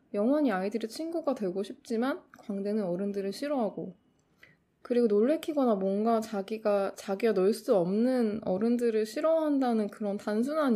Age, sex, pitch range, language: 20-39, female, 195-255 Hz, Korean